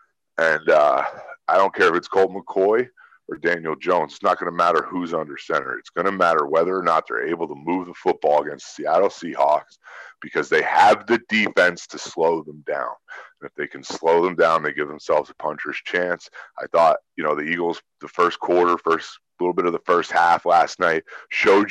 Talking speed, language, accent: 215 wpm, English, American